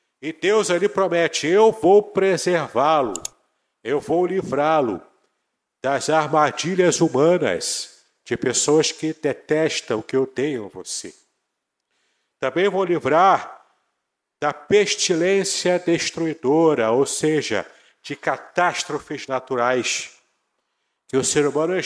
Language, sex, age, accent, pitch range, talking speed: Portuguese, male, 50-69, Brazilian, 150-190 Hz, 105 wpm